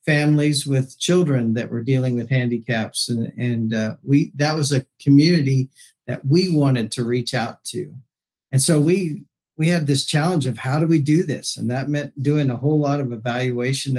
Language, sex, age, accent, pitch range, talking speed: English, male, 50-69, American, 125-150 Hz, 195 wpm